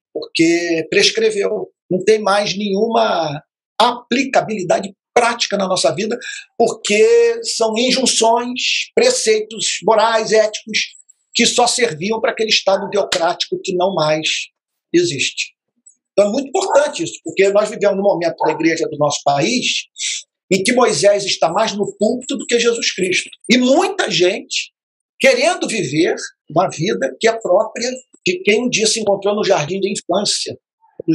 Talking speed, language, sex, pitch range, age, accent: 145 wpm, Portuguese, male, 205-330 Hz, 50-69, Brazilian